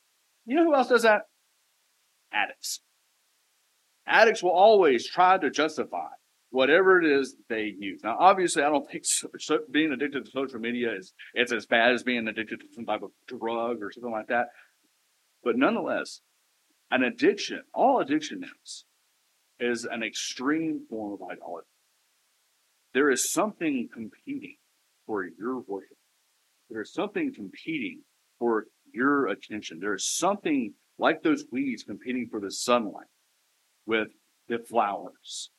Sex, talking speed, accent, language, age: male, 145 wpm, American, English, 50-69